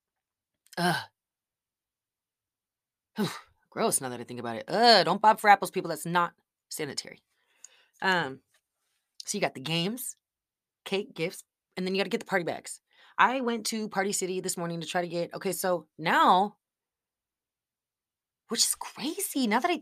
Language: English